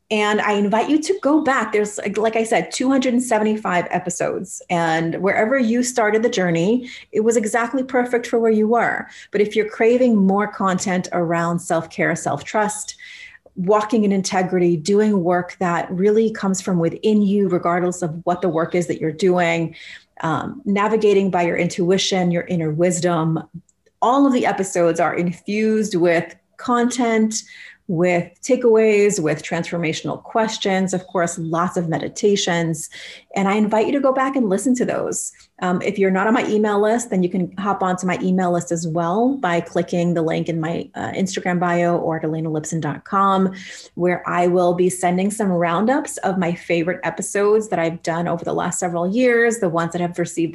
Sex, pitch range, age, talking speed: female, 175-220 Hz, 30-49, 175 wpm